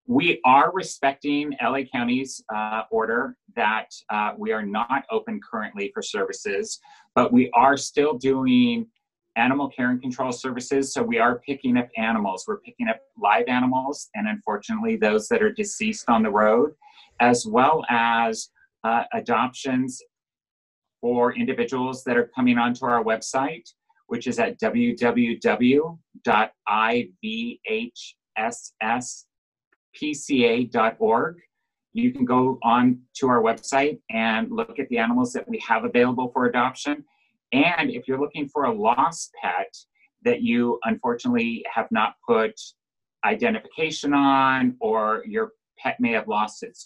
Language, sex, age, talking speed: English, male, 40-59, 135 wpm